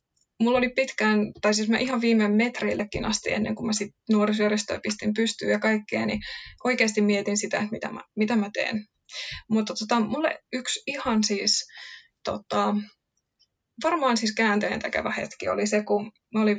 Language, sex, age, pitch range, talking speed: Finnish, female, 20-39, 210-245 Hz, 160 wpm